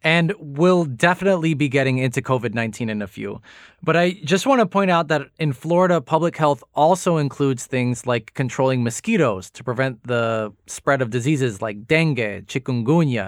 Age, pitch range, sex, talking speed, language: 20-39, 120-175 Hz, male, 165 wpm, English